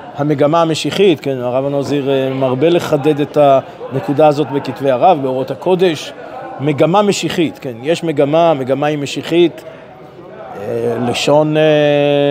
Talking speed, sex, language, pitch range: 110 wpm, male, Hebrew, 140-175 Hz